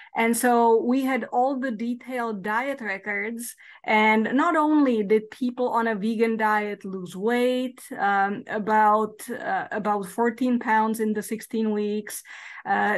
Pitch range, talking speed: 220-250 Hz, 145 wpm